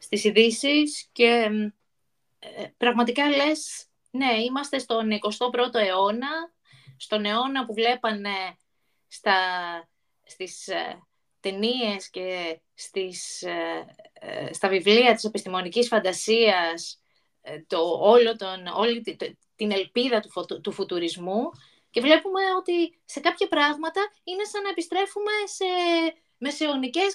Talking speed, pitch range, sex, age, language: 115 wpm, 205-325 Hz, female, 20-39, Greek